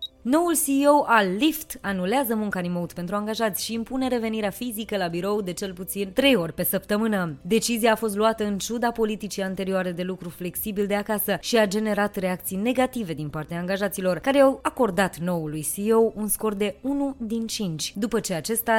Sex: female